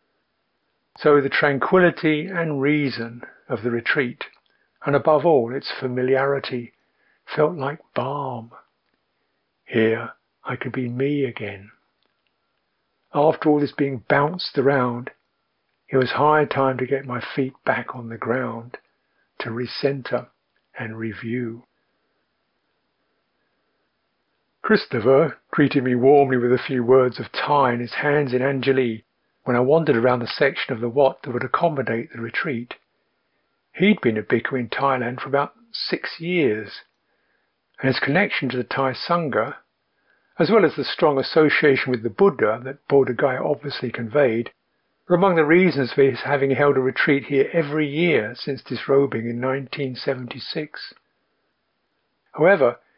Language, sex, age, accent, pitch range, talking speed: English, male, 50-69, British, 125-145 Hz, 135 wpm